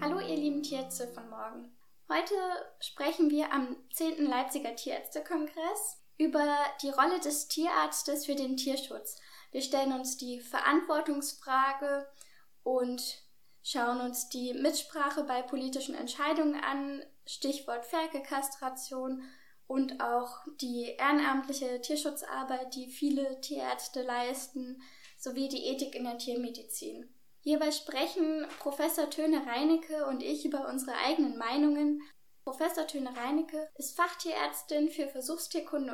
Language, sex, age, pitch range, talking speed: English, female, 10-29, 260-310 Hz, 115 wpm